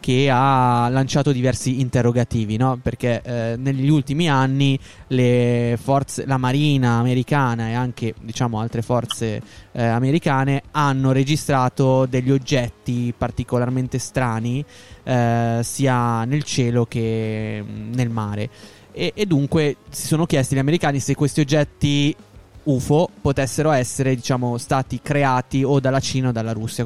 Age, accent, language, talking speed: 20-39, native, Italian, 130 wpm